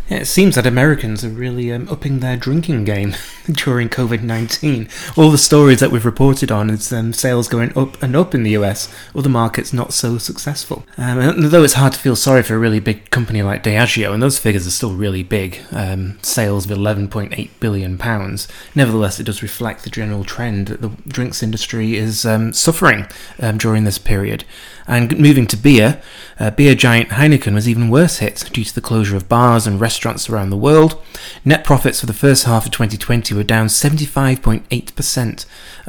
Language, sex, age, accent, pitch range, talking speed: English, male, 20-39, British, 105-135 Hz, 195 wpm